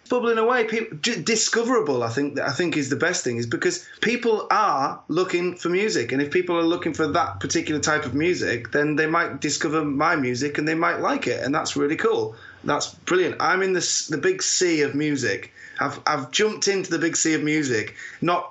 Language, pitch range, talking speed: English, 130-180 Hz, 215 wpm